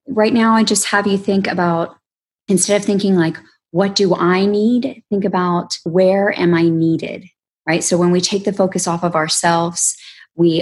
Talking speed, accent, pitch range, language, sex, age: 185 wpm, American, 160-195 Hz, English, female, 20-39